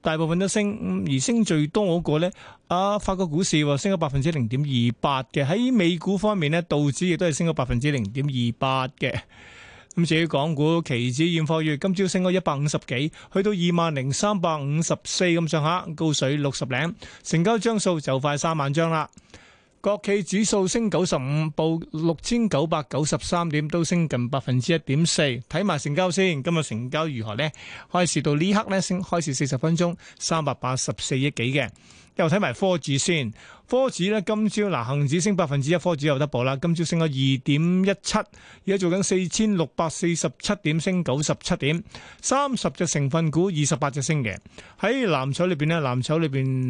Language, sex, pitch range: Chinese, male, 140-180 Hz